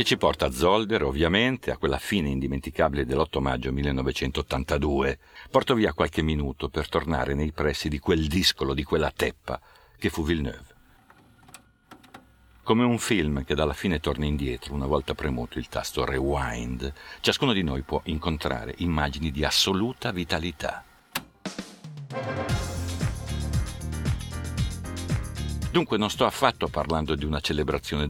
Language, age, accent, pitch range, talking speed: Italian, 50-69, native, 70-95 Hz, 130 wpm